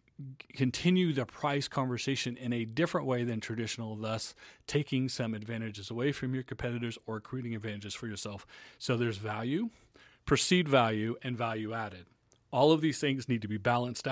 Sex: male